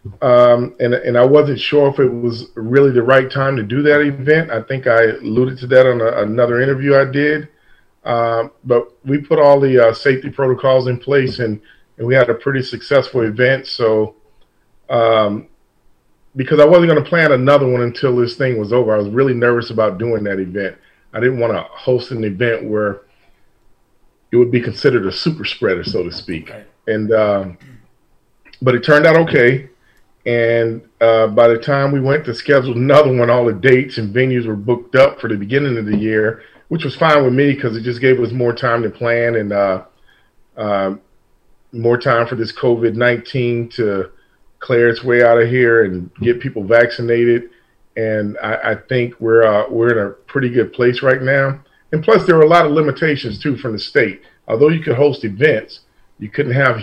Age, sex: 40-59, male